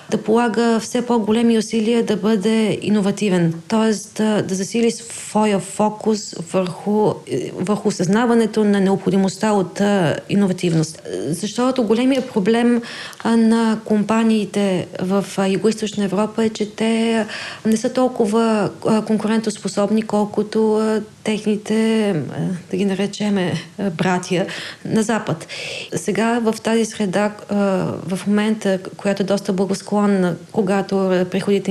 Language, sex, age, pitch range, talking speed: Bulgarian, female, 20-39, 195-220 Hz, 110 wpm